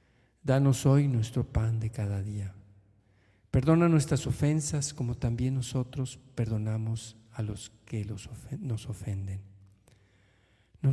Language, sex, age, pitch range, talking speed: Spanish, male, 50-69, 110-135 Hz, 110 wpm